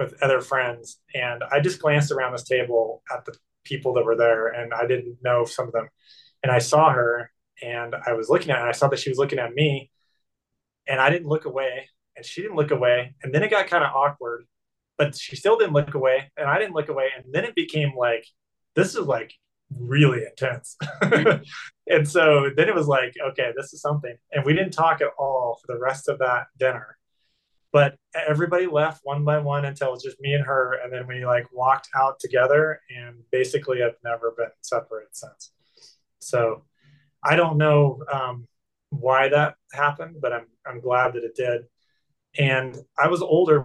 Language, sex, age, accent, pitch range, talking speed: English, male, 20-39, American, 120-145 Hz, 205 wpm